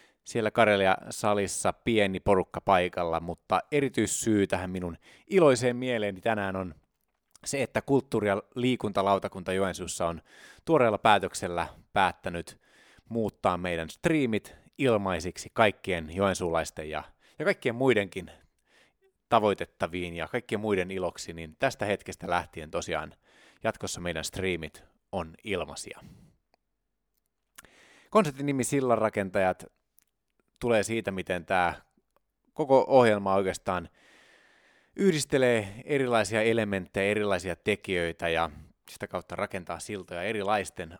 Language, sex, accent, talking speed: Finnish, male, native, 100 wpm